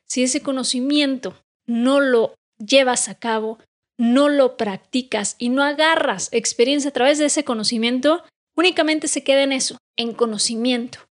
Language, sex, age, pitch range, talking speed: Spanish, female, 30-49, 235-290 Hz, 145 wpm